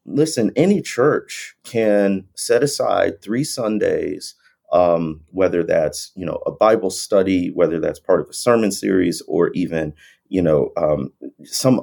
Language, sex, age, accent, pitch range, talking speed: English, male, 30-49, American, 95-125 Hz, 145 wpm